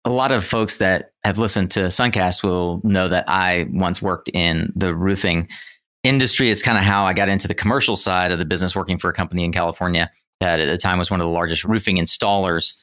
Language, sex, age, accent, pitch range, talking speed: English, male, 30-49, American, 90-110 Hz, 230 wpm